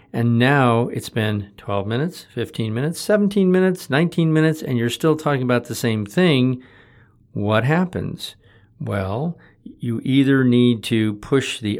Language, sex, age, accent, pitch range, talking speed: English, male, 50-69, American, 110-130 Hz, 145 wpm